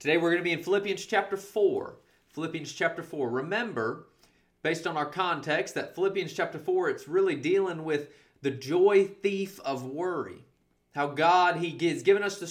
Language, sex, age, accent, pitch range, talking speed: English, male, 30-49, American, 140-200 Hz, 175 wpm